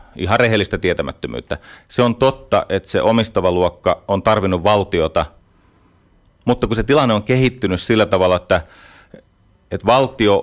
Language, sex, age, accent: Finnish, male, 30-49, native